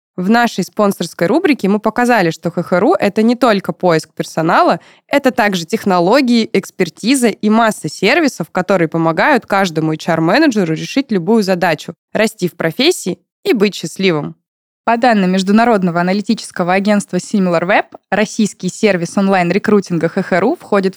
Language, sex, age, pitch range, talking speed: Russian, female, 20-39, 180-225 Hz, 125 wpm